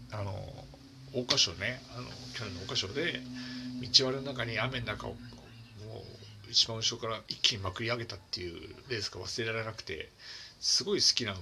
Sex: male